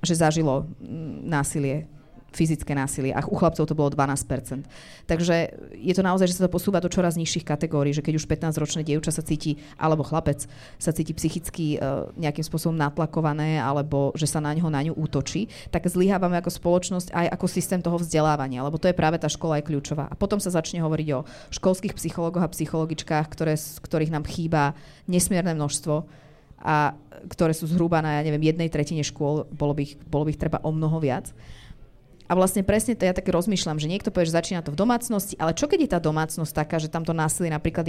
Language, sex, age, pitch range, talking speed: Slovak, female, 30-49, 150-180 Hz, 200 wpm